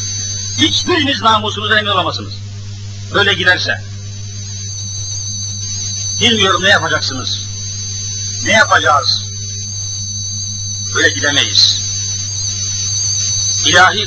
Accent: native